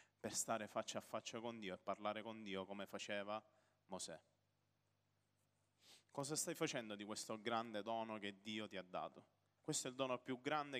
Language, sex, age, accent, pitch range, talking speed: Italian, male, 30-49, native, 110-130 Hz, 170 wpm